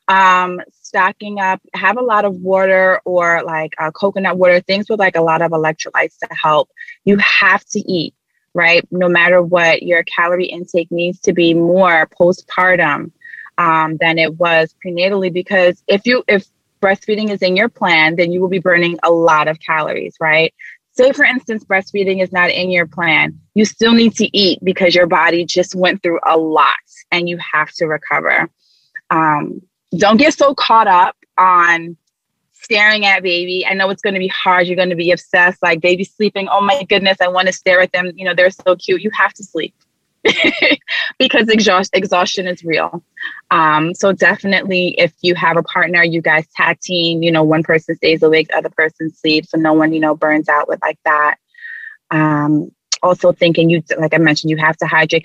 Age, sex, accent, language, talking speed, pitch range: 20-39, female, American, English, 195 wpm, 165-195 Hz